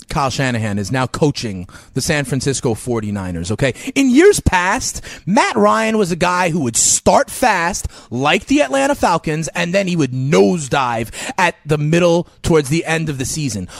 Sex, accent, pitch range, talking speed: male, American, 135-210 Hz, 175 wpm